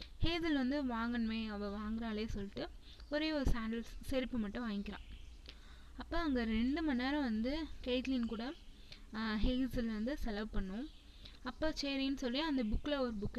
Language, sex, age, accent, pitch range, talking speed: Tamil, female, 20-39, native, 210-265 Hz, 140 wpm